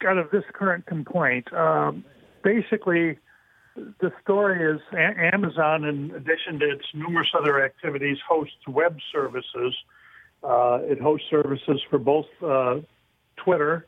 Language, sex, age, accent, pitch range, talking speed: English, male, 60-79, American, 135-170 Hz, 125 wpm